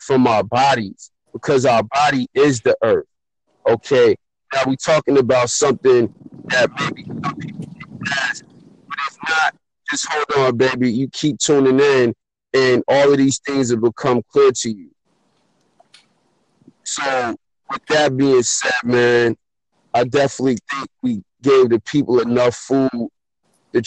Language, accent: English, American